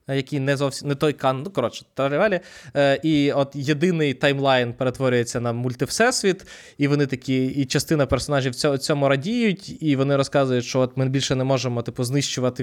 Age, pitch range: 20-39, 125-155 Hz